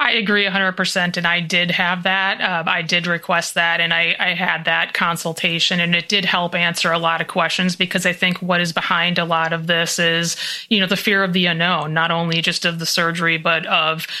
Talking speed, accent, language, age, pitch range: 230 wpm, American, English, 30-49, 170-190 Hz